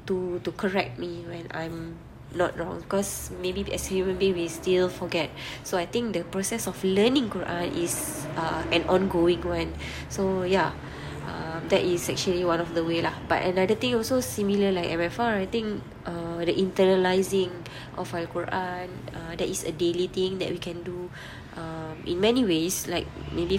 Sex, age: female, 20-39